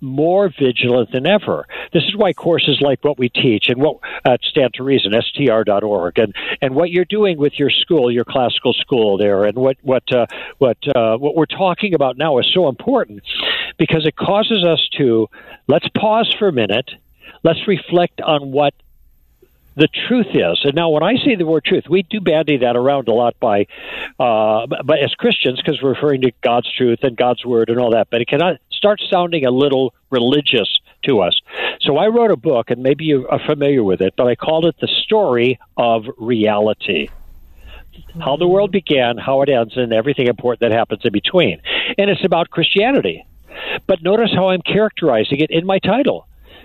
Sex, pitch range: male, 120-185 Hz